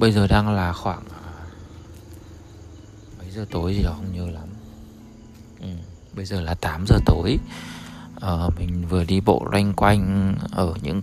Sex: male